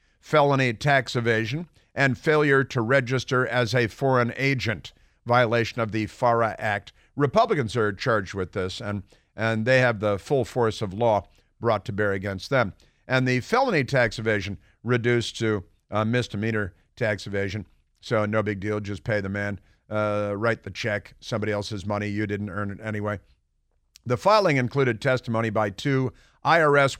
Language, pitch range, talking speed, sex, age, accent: English, 105-130 Hz, 160 wpm, male, 50-69, American